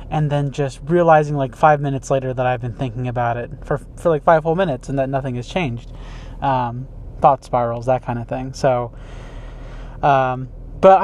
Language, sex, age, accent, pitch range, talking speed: English, male, 20-39, American, 125-140 Hz, 190 wpm